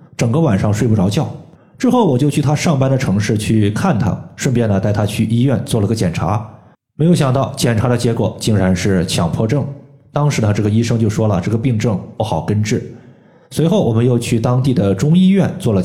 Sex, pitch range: male, 110-150 Hz